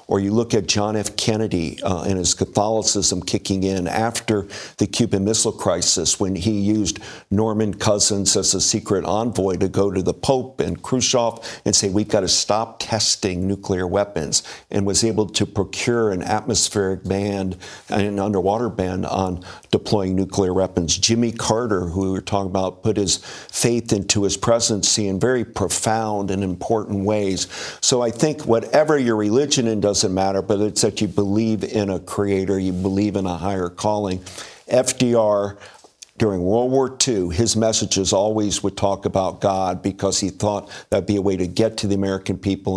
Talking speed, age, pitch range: 180 wpm, 50-69, 95-110 Hz